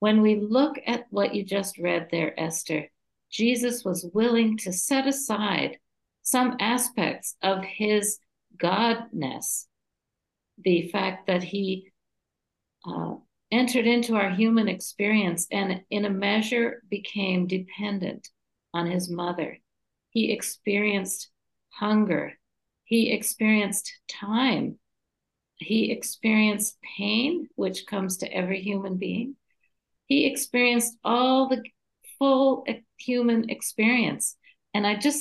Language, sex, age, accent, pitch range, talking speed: English, female, 60-79, American, 195-240 Hz, 110 wpm